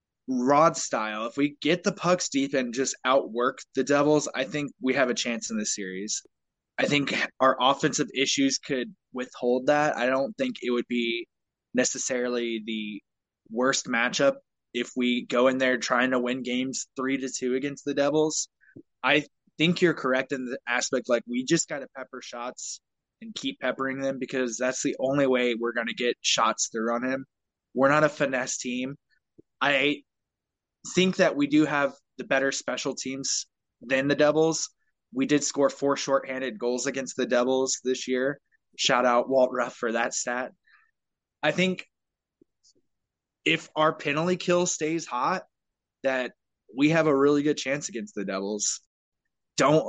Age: 20-39